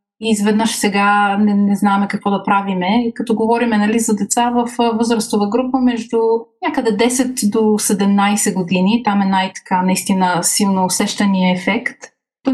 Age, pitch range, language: 30-49, 195-230 Hz, Bulgarian